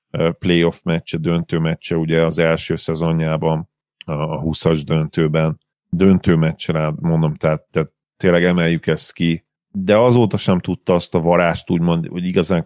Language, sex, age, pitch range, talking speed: Hungarian, male, 40-59, 80-100 Hz, 145 wpm